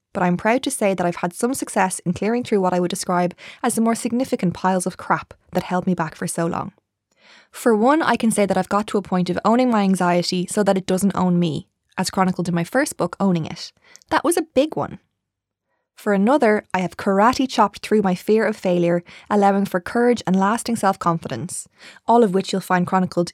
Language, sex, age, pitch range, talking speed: English, female, 20-39, 185-235 Hz, 225 wpm